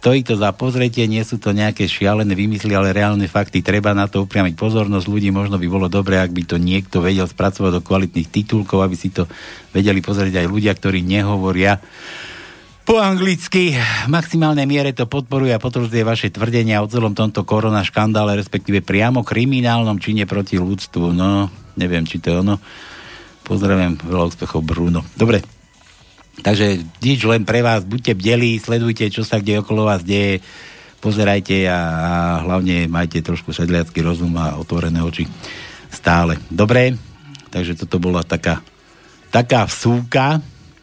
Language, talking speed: Slovak, 155 wpm